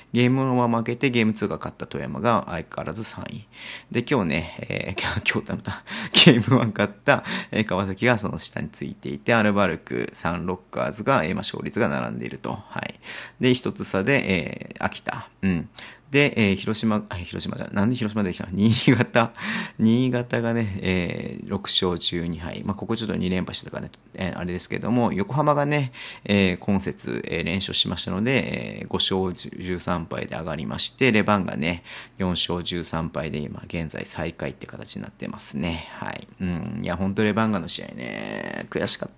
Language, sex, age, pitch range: Japanese, male, 40-59, 95-125 Hz